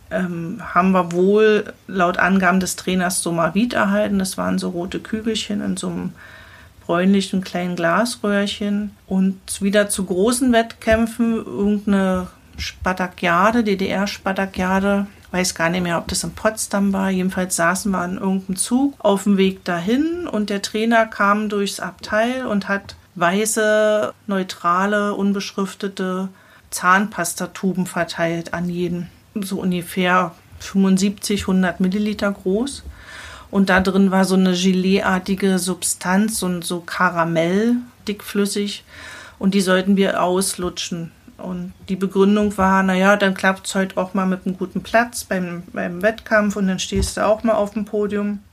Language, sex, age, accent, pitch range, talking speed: German, female, 40-59, German, 185-215 Hz, 140 wpm